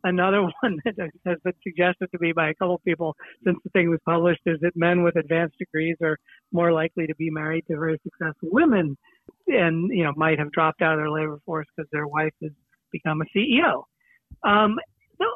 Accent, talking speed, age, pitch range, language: American, 210 wpm, 50-69, 160-210 Hz, English